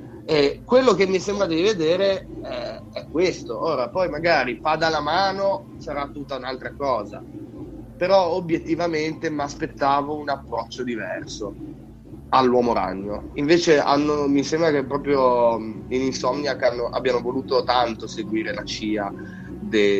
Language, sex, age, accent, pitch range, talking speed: Italian, male, 30-49, native, 105-150 Hz, 130 wpm